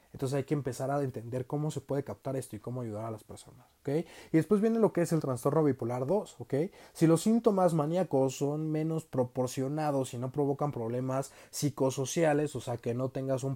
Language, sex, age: Spanish, male, 30-49